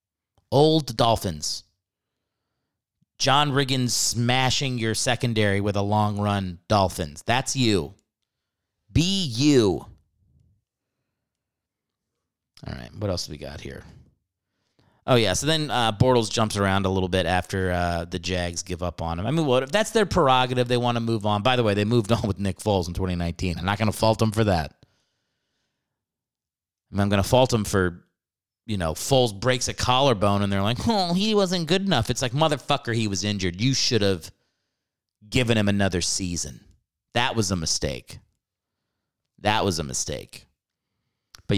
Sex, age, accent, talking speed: male, 30-49, American, 170 wpm